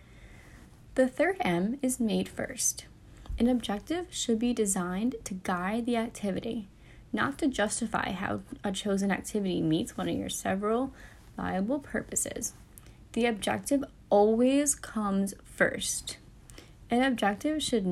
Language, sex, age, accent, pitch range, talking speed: English, female, 10-29, American, 200-245 Hz, 125 wpm